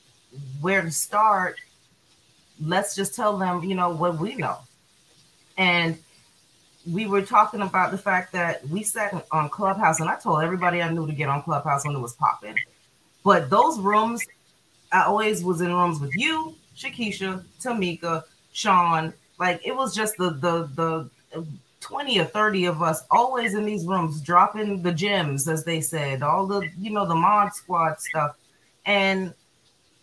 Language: English